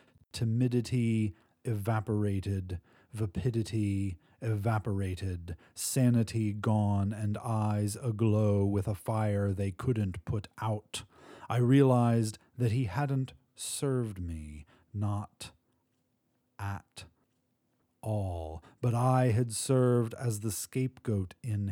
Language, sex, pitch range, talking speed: English, male, 100-125 Hz, 95 wpm